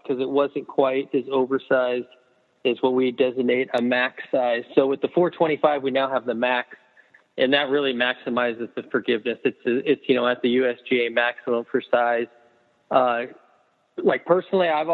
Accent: American